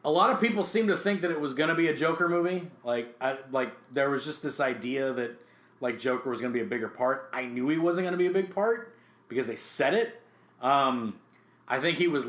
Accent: American